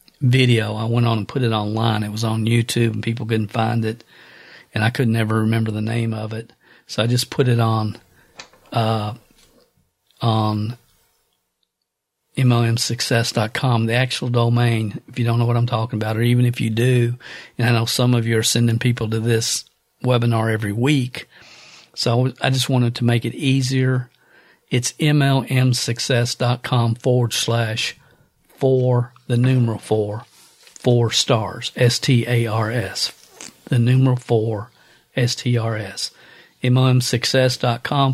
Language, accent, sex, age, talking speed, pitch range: English, American, male, 50-69, 140 wpm, 115-130 Hz